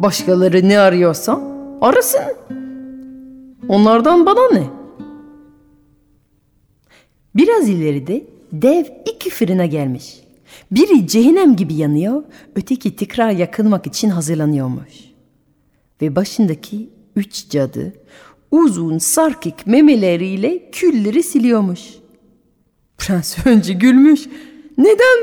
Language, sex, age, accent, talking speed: Turkish, female, 40-59, native, 85 wpm